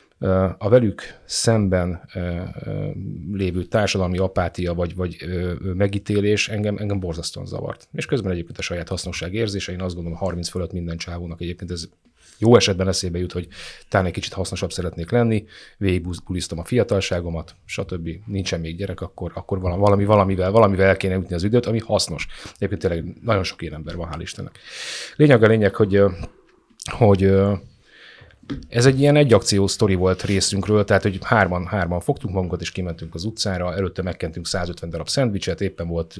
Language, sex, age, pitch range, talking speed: Hungarian, male, 30-49, 85-100 Hz, 160 wpm